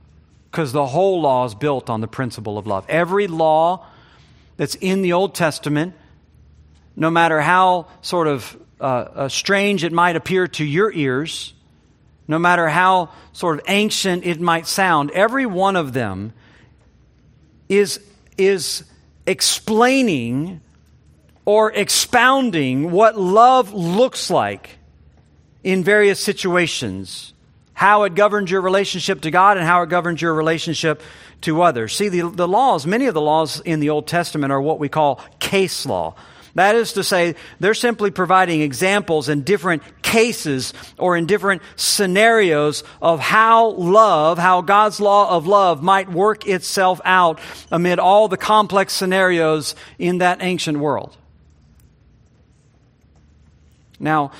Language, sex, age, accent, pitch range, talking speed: English, male, 50-69, American, 140-195 Hz, 140 wpm